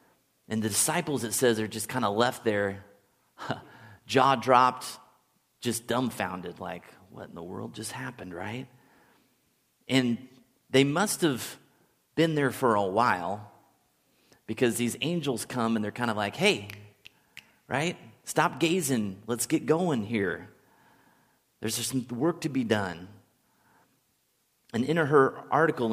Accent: American